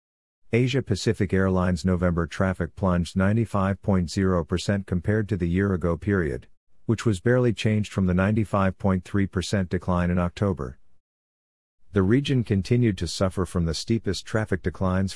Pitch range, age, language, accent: 90-105 Hz, 50-69, English, American